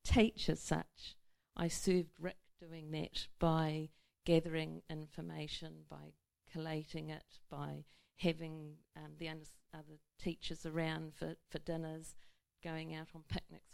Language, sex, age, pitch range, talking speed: English, female, 50-69, 160-195 Hz, 120 wpm